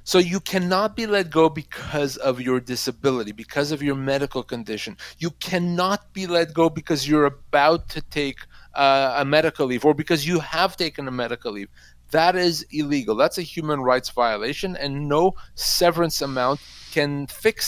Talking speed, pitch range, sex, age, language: 175 wpm, 135-165 Hz, male, 30-49, English